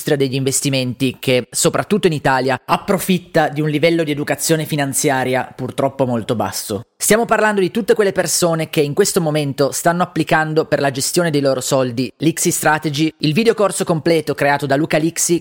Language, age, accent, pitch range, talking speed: Italian, 30-49, native, 140-170 Hz, 165 wpm